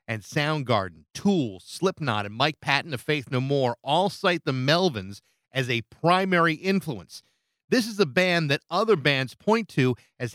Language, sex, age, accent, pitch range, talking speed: English, male, 40-59, American, 130-170 Hz, 170 wpm